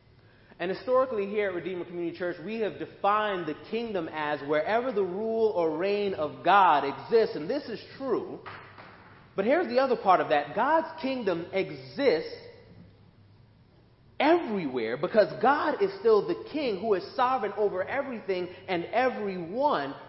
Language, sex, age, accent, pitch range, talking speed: English, male, 30-49, American, 160-225 Hz, 145 wpm